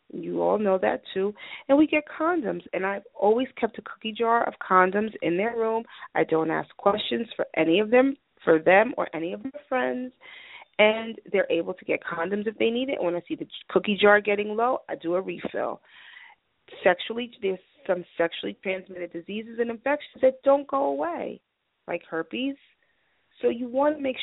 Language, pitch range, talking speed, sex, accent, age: English, 180-255 Hz, 190 wpm, female, American, 30-49